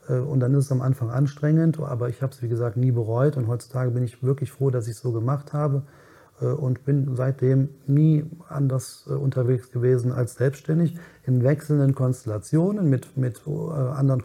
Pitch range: 120-145 Hz